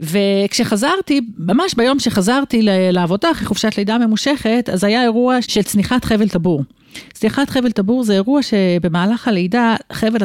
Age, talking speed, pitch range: 40-59, 140 wpm, 185-235 Hz